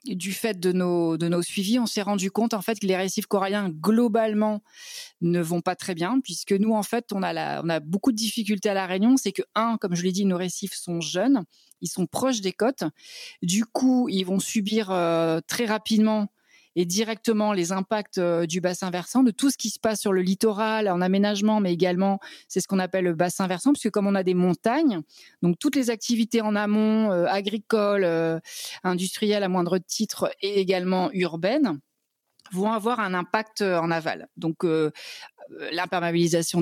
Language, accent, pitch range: French, French, 180-220 Hz